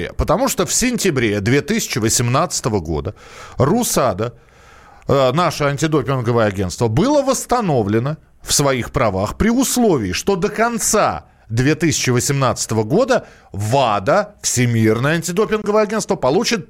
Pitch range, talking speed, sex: 120-180 Hz, 100 wpm, male